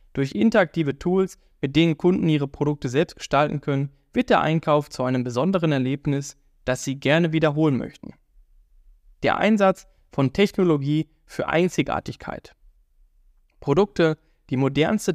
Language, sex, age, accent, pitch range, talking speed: German, male, 10-29, German, 135-165 Hz, 125 wpm